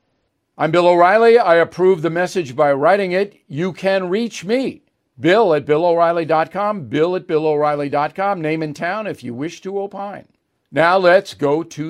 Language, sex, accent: English, male, American